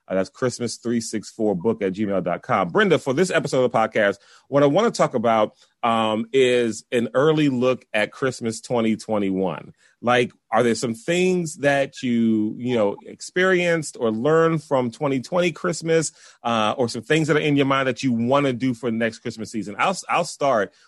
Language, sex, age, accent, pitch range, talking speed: English, male, 30-49, American, 105-135 Hz, 180 wpm